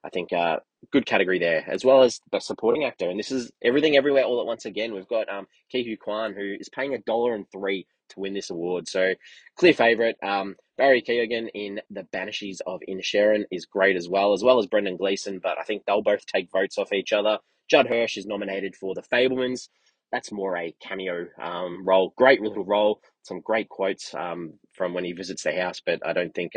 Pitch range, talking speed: 95-115 Hz, 220 wpm